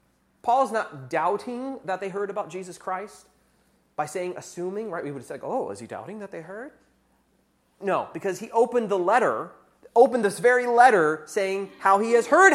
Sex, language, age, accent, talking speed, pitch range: male, English, 30-49, American, 180 wpm, 175-230 Hz